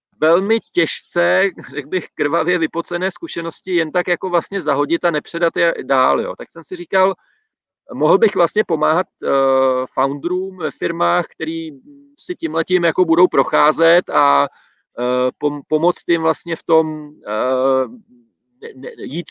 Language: Slovak